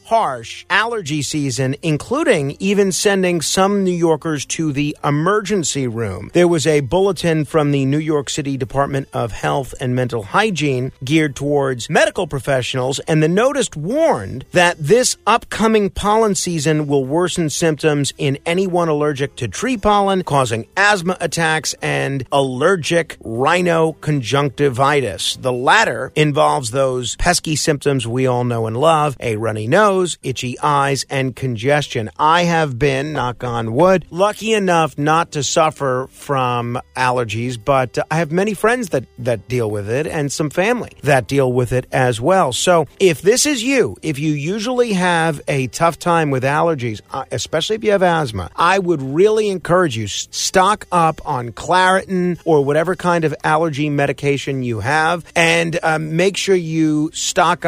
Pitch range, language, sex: 135-175 Hz, English, male